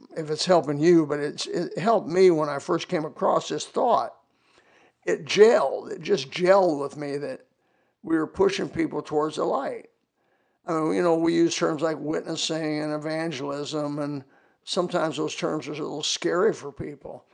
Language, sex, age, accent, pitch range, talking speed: English, male, 50-69, American, 150-185 Hz, 170 wpm